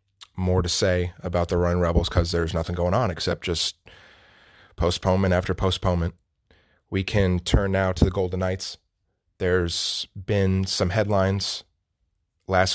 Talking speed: 140 wpm